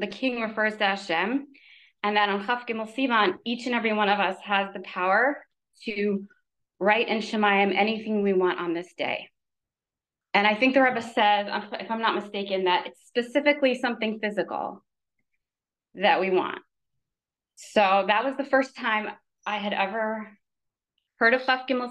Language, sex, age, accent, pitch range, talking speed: English, female, 20-39, American, 185-230 Hz, 165 wpm